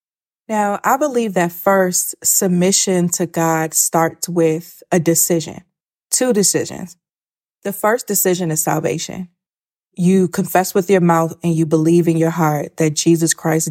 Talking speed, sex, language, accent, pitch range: 145 wpm, female, English, American, 160-180 Hz